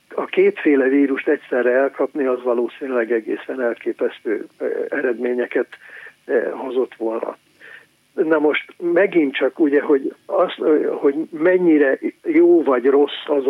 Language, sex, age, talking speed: Hungarian, male, 60-79, 110 wpm